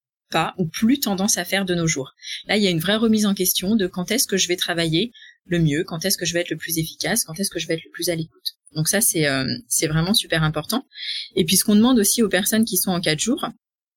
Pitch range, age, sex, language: 165-210 Hz, 20-39, female, French